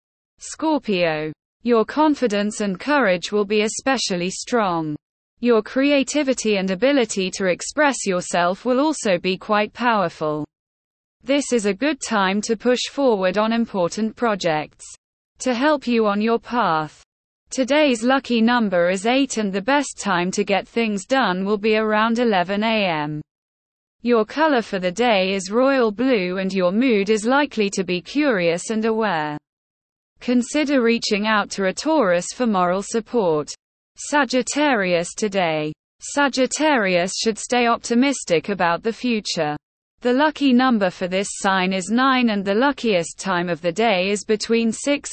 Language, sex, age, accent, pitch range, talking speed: English, female, 20-39, British, 185-250 Hz, 145 wpm